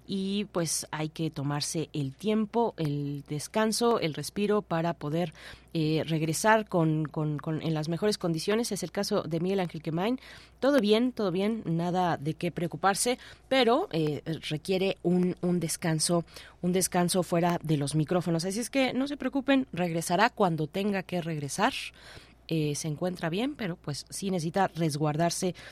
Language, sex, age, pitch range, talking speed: Spanish, female, 20-39, 160-200 Hz, 160 wpm